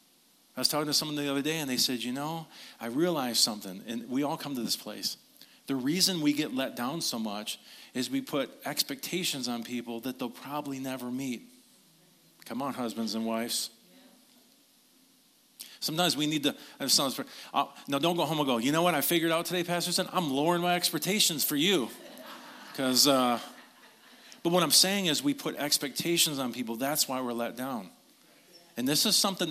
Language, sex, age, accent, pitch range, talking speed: English, male, 40-59, American, 130-180 Hz, 185 wpm